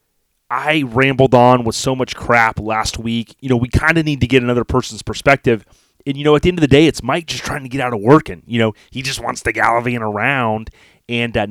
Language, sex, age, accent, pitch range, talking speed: English, male, 30-49, American, 110-130 Hz, 250 wpm